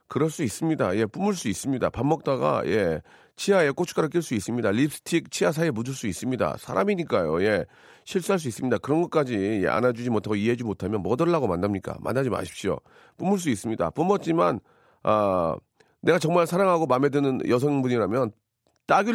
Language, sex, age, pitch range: Korean, male, 40-59, 105-160 Hz